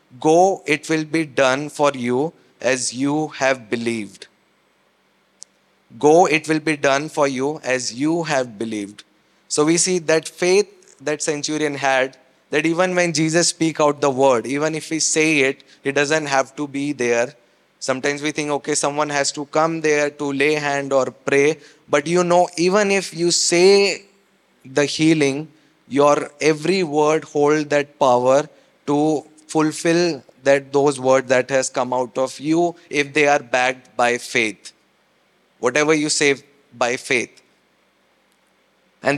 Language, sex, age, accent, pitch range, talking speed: English, male, 20-39, Indian, 135-155 Hz, 155 wpm